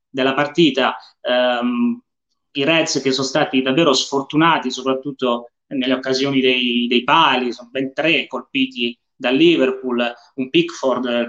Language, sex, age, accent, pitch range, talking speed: Italian, male, 20-39, native, 120-140 Hz, 135 wpm